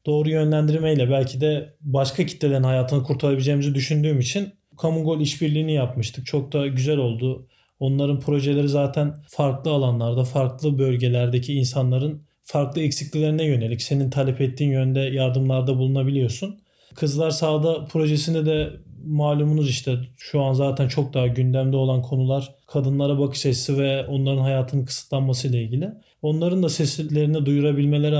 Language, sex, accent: Turkish, male, native